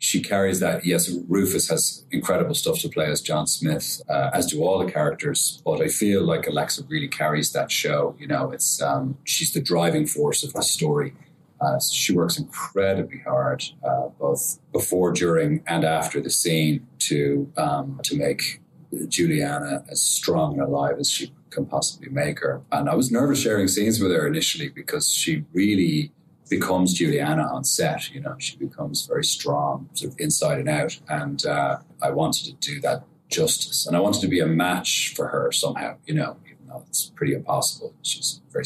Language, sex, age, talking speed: English, male, 30-49, 190 wpm